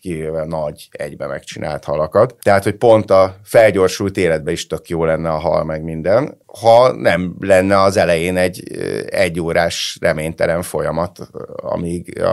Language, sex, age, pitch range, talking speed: Hungarian, male, 30-49, 85-100 Hz, 140 wpm